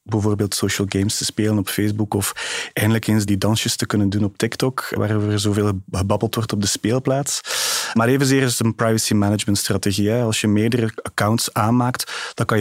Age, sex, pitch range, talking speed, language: 30-49, male, 105-120 Hz, 185 wpm, Dutch